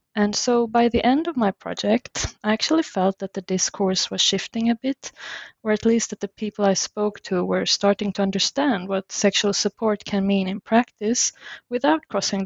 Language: English